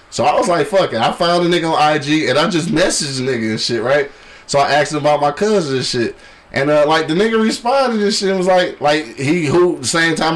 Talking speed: 270 wpm